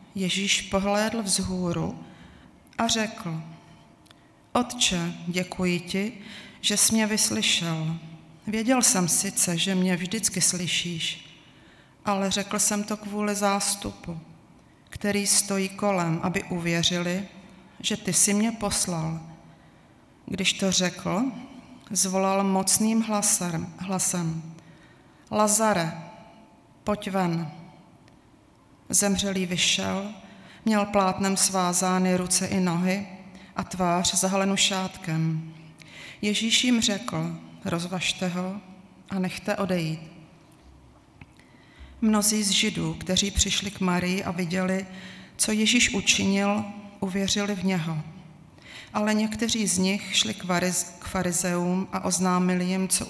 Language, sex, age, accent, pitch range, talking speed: Czech, female, 30-49, native, 175-205 Hz, 100 wpm